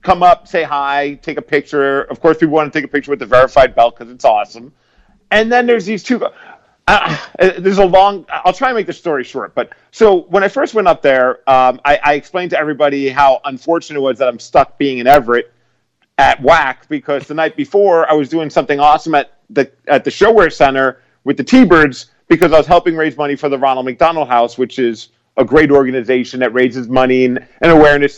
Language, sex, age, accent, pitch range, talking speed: English, male, 40-59, American, 130-180 Hz, 220 wpm